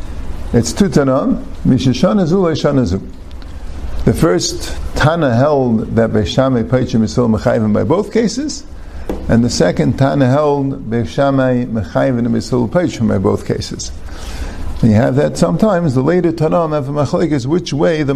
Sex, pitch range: male, 110-150 Hz